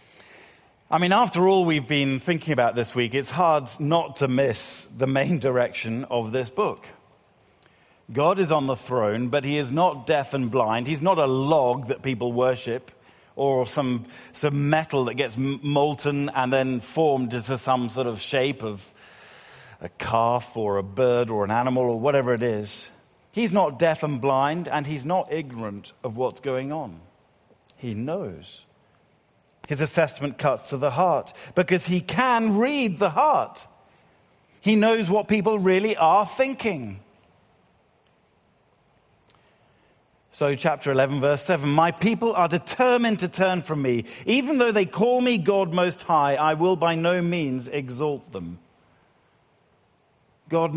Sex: male